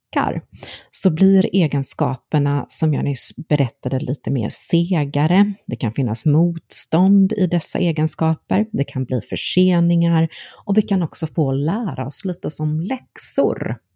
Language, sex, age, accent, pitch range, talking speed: Swedish, female, 30-49, native, 145-175 Hz, 135 wpm